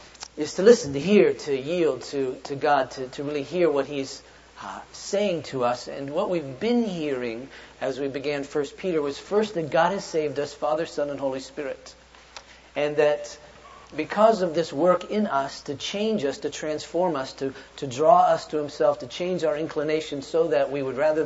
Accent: American